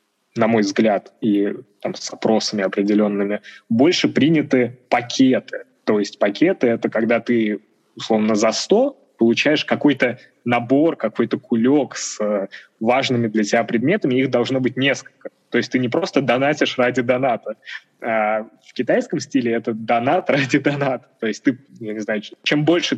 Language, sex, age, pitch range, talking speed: Russian, male, 20-39, 110-130 Hz, 145 wpm